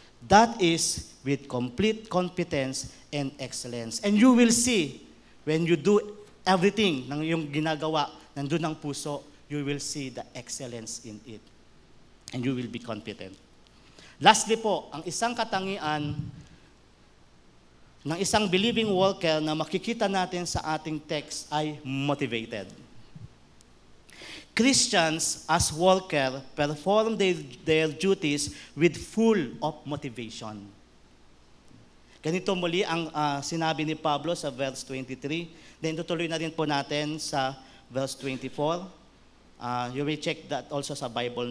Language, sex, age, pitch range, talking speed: English, male, 40-59, 135-180 Hz, 125 wpm